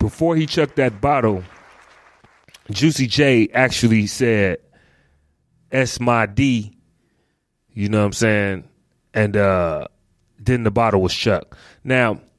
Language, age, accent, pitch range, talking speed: English, 30-49, American, 100-125 Hz, 110 wpm